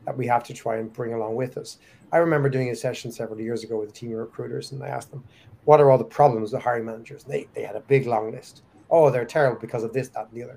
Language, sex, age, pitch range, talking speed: English, male, 30-49, 115-145 Hz, 300 wpm